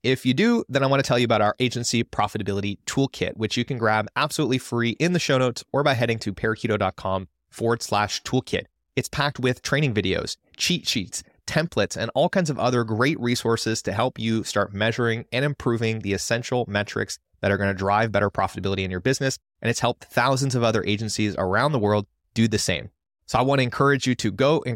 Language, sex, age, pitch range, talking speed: English, male, 30-49, 100-125 Hz, 215 wpm